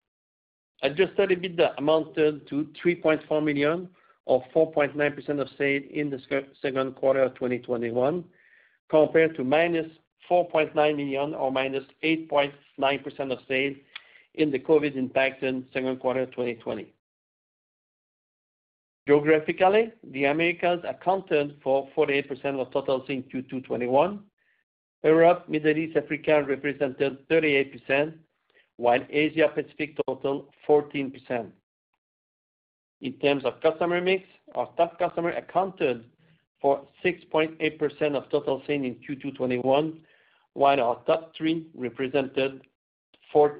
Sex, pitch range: male, 135-160 Hz